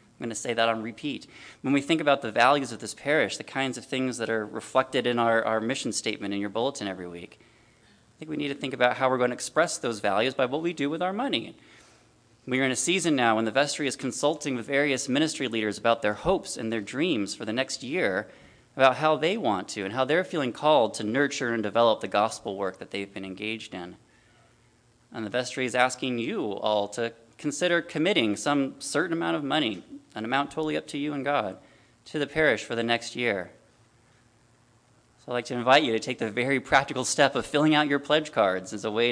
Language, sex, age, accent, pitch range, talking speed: English, male, 30-49, American, 115-140 Hz, 235 wpm